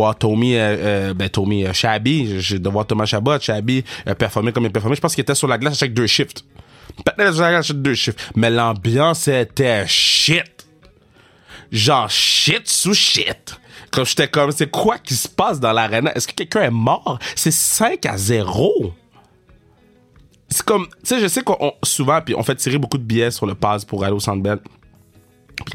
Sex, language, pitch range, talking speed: male, French, 110-150 Hz, 185 wpm